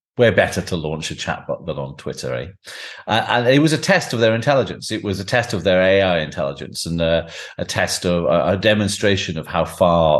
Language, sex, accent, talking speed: English, male, British, 225 wpm